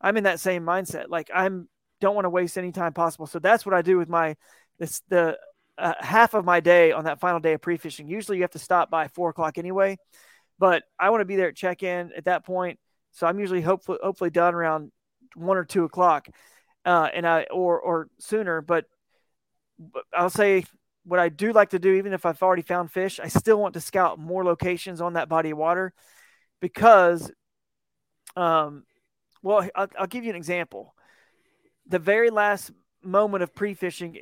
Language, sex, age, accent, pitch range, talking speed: English, male, 30-49, American, 170-190 Hz, 200 wpm